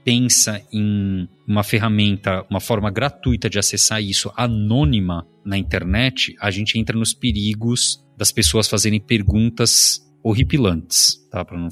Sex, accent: male, Brazilian